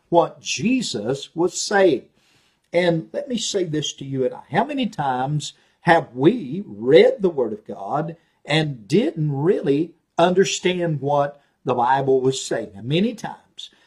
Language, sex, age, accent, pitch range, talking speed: English, male, 50-69, American, 140-200 Hz, 145 wpm